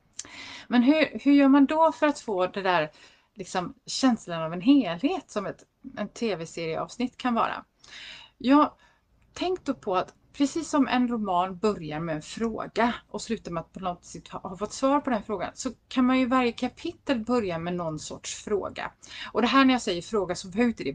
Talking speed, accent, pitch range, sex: 195 wpm, native, 180-255 Hz, female